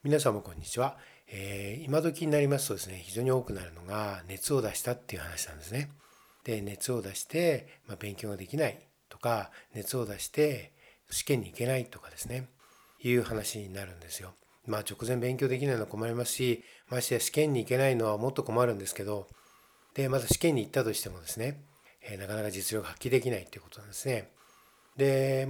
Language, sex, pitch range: Japanese, male, 105-145 Hz